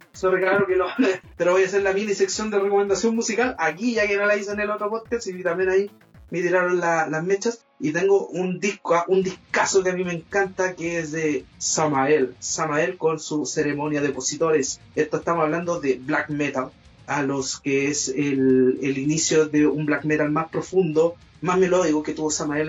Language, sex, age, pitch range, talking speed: Spanish, male, 30-49, 145-180 Hz, 205 wpm